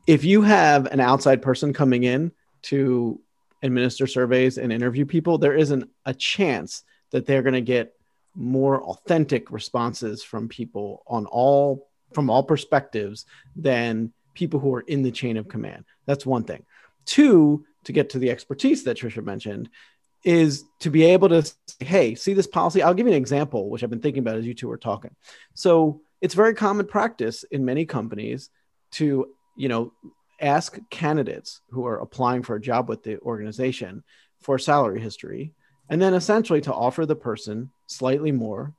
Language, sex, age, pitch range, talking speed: English, male, 30-49, 115-145 Hz, 175 wpm